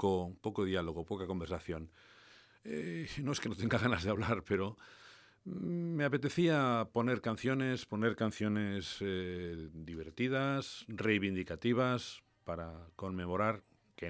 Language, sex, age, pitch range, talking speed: English, male, 50-69, 90-110 Hz, 115 wpm